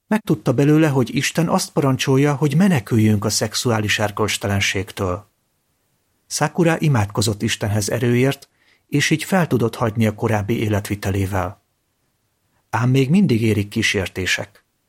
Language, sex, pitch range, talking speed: Hungarian, male, 105-135 Hz, 115 wpm